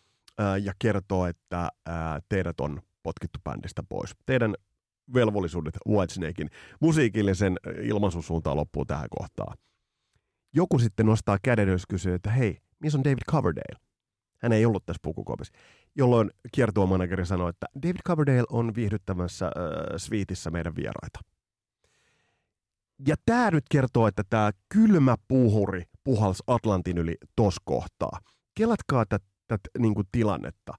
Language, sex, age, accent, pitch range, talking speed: Finnish, male, 30-49, native, 95-130 Hz, 130 wpm